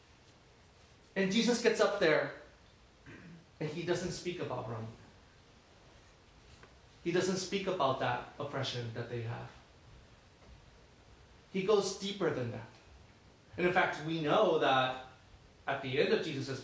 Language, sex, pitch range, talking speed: English, male, 150-205 Hz, 130 wpm